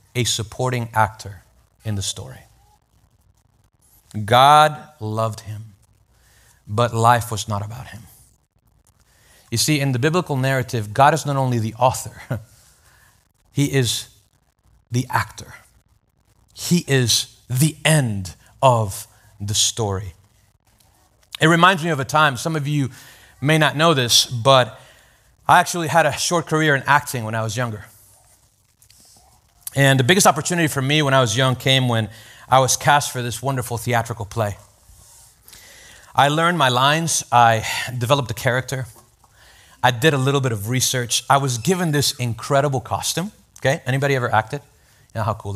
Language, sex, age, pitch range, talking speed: English, male, 30-49, 110-145 Hz, 150 wpm